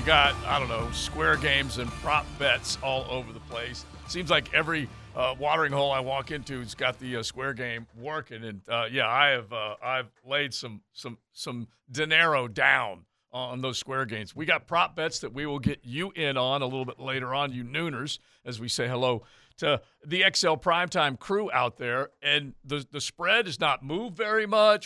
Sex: male